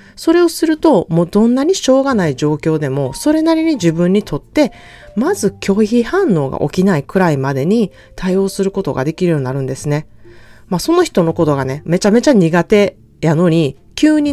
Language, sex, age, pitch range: Japanese, female, 30-49, 150-240 Hz